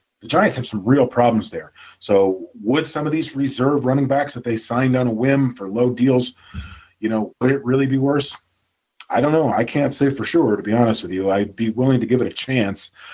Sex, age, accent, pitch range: male, 40-59, American, 100-130 Hz